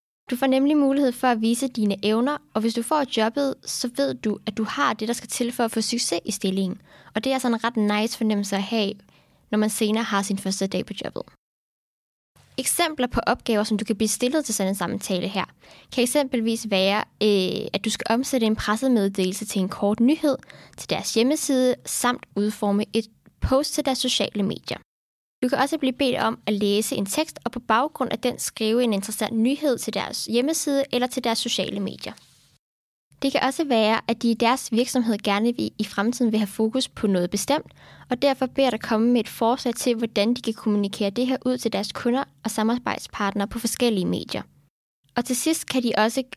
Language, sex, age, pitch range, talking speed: Danish, female, 10-29, 210-255 Hz, 210 wpm